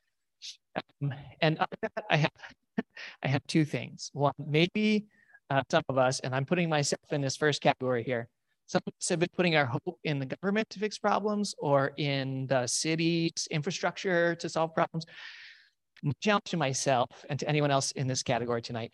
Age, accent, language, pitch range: 30-49, American, English, 130-170 Hz